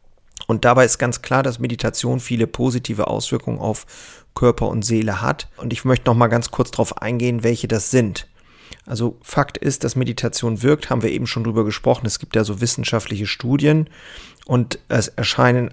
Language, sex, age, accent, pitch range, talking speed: German, male, 30-49, German, 115-130 Hz, 180 wpm